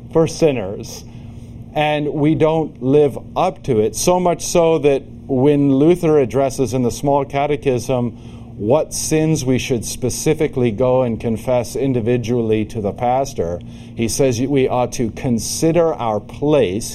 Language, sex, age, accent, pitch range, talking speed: English, male, 50-69, American, 115-150 Hz, 140 wpm